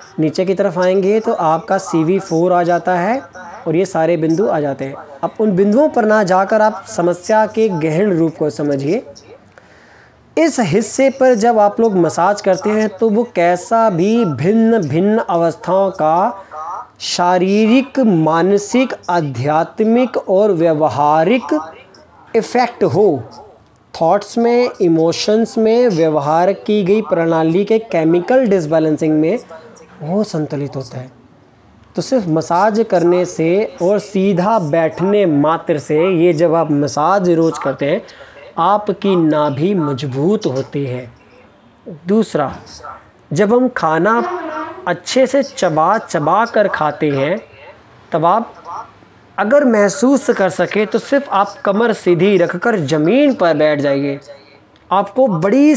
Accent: native